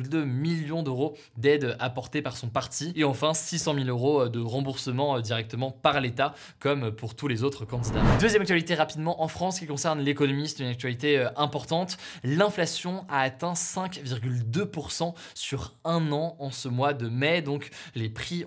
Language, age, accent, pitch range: French, 20-39, French, 125-155 Hz